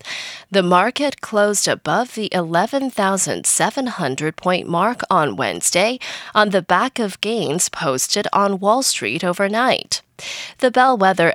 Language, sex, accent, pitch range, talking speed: English, female, American, 170-240 Hz, 110 wpm